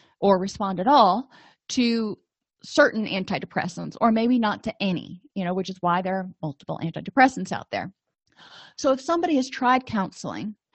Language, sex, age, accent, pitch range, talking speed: English, female, 30-49, American, 190-245 Hz, 160 wpm